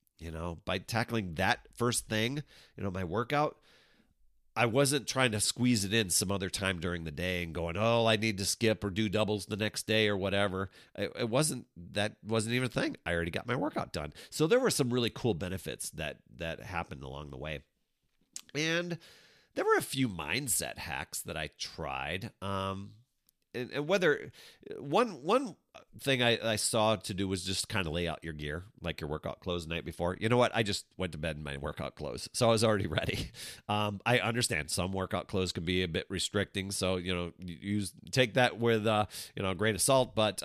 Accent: American